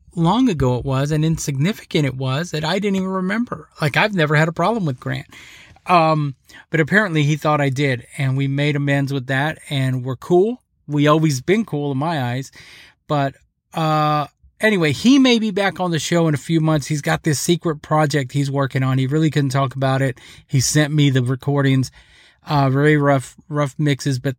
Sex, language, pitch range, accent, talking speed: male, English, 135-160 Hz, American, 205 wpm